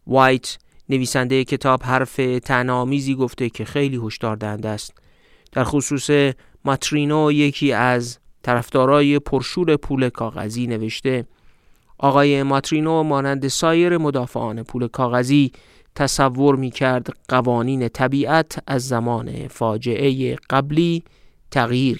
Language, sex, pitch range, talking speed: Persian, male, 120-145 Hz, 100 wpm